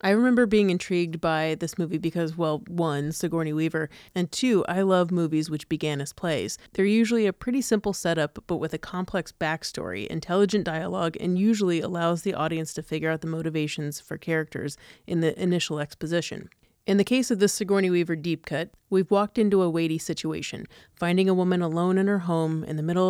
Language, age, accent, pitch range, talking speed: English, 30-49, American, 160-190 Hz, 195 wpm